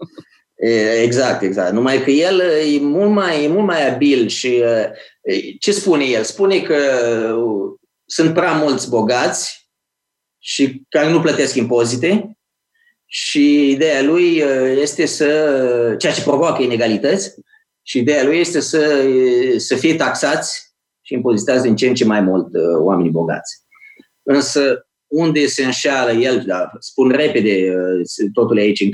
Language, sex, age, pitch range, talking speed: Romanian, male, 30-49, 115-155 Hz, 135 wpm